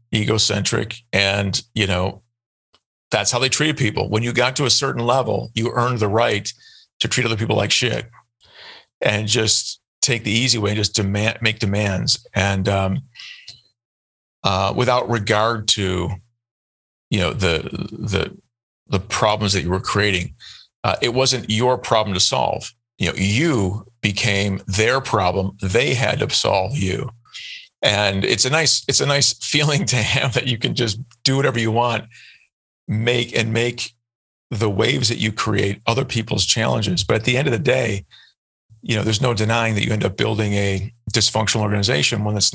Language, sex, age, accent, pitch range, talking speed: English, male, 40-59, American, 100-120 Hz, 170 wpm